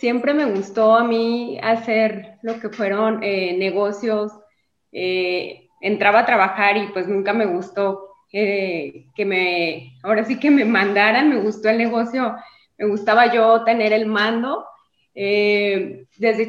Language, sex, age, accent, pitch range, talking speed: Spanish, female, 20-39, Mexican, 200-235 Hz, 145 wpm